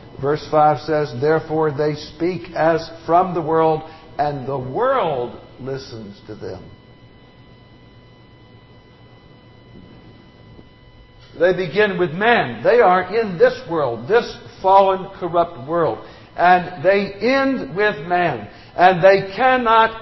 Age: 60-79